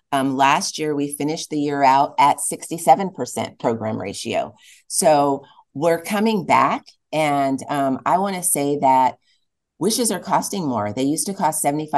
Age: 30-49